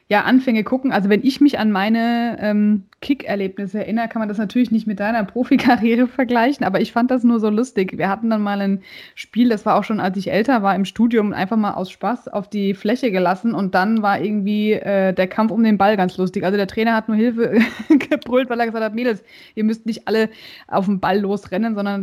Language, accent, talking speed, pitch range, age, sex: German, German, 230 wpm, 205-250 Hz, 20-39, female